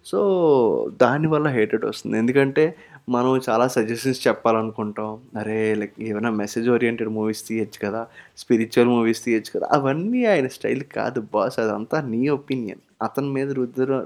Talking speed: 135 wpm